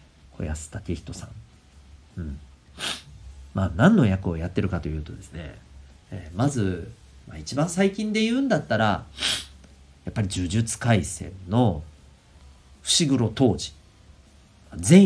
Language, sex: Japanese, male